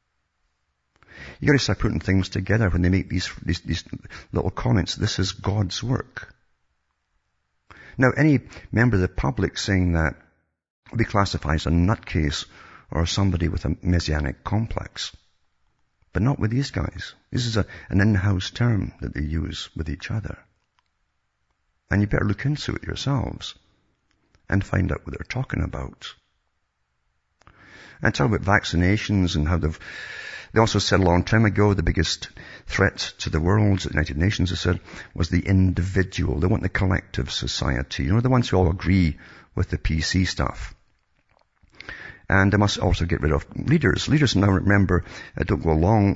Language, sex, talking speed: English, male, 165 wpm